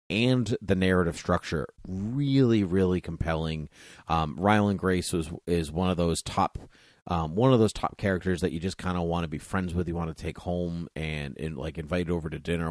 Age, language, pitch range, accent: 30-49, English, 80-95 Hz, American